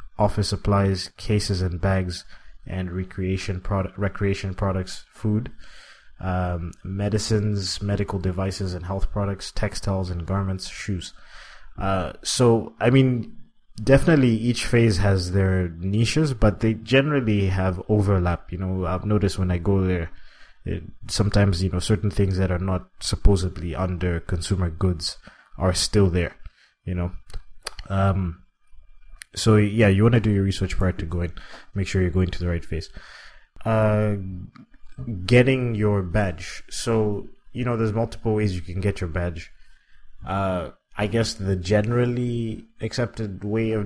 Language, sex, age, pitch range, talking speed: English, male, 20-39, 90-105 Hz, 145 wpm